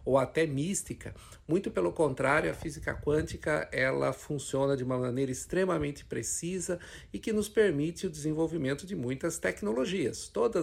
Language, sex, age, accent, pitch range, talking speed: Portuguese, male, 50-69, Brazilian, 130-175 Hz, 135 wpm